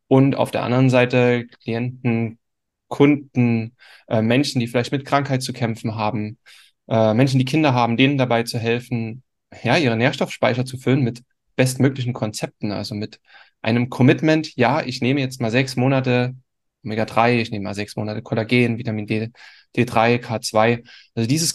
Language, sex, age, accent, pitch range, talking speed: German, male, 10-29, German, 115-130 Hz, 160 wpm